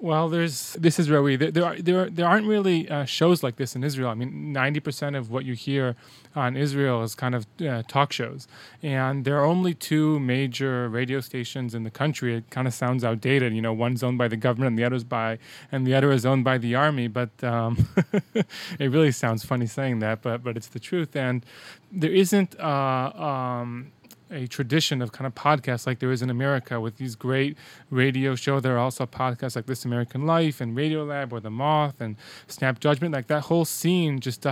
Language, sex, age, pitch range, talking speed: English, male, 20-39, 125-150 Hz, 215 wpm